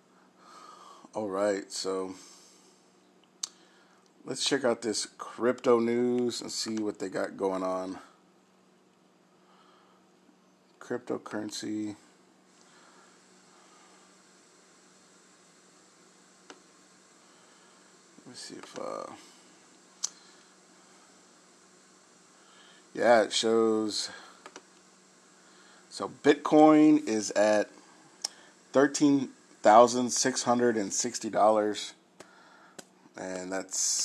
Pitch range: 105-120 Hz